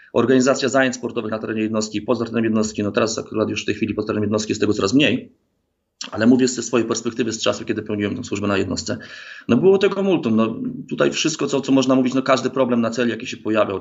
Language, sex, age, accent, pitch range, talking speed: Polish, male, 30-49, native, 110-125 Hz, 240 wpm